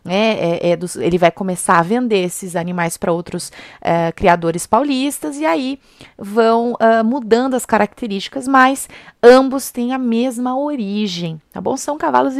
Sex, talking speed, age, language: female, 160 wpm, 30-49, Portuguese